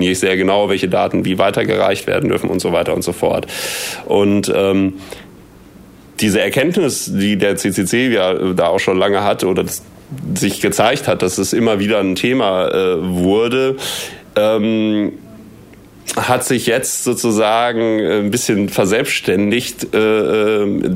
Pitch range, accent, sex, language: 100-115 Hz, German, male, German